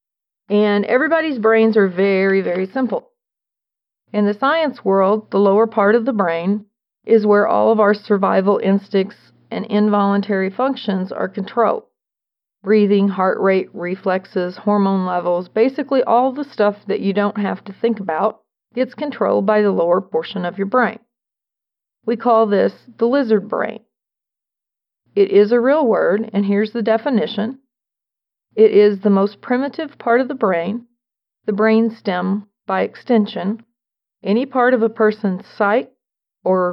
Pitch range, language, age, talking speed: 195-235 Hz, English, 40-59, 145 wpm